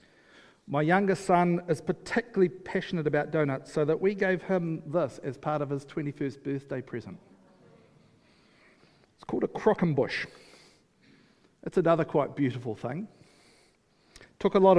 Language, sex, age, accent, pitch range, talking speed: English, male, 50-69, Australian, 135-175 Hz, 140 wpm